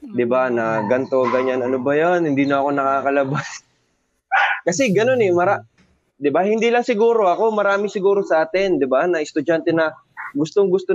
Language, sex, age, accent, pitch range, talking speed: Filipino, male, 20-39, native, 125-185 Hz, 170 wpm